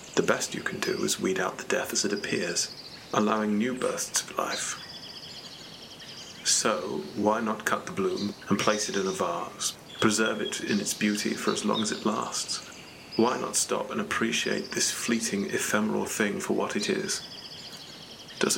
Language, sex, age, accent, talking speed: English, male, 30-49, British, 180 wpm